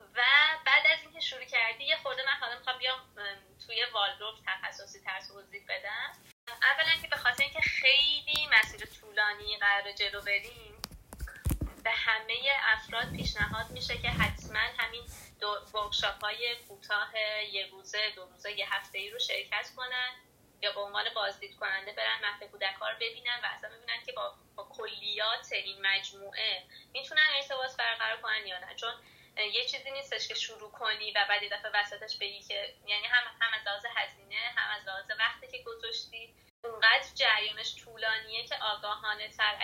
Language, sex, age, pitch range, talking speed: Persian, female, 20-39, 205-250 Hz, 155 wpm